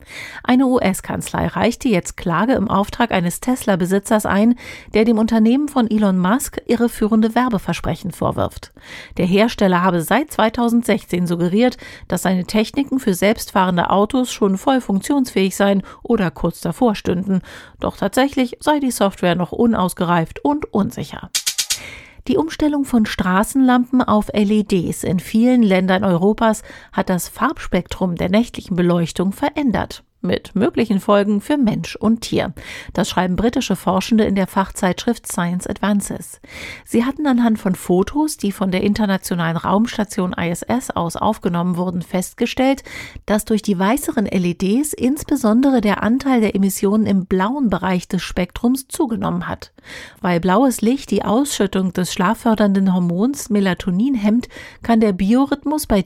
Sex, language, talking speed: female, German, 135 wpm